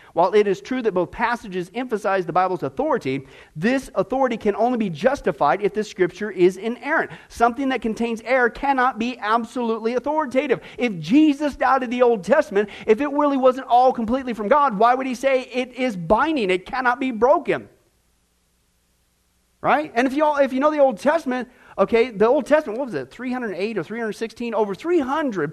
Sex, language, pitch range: male, English, 160-255 Hz